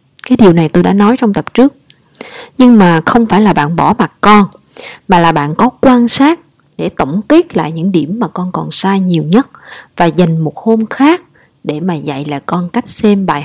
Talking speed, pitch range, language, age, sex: 220 wpm, 170-235 Hz, Vietnamese, 20-39, female